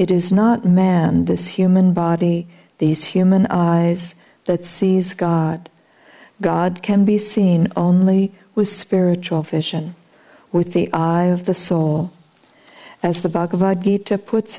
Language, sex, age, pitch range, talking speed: English, female, 60-79, 170-200 Hz, 130 wpm